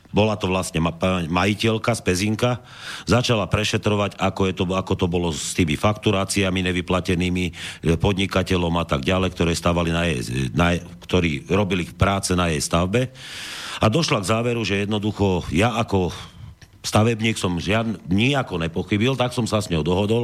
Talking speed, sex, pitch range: 150 wpm, male, 90-115 Hz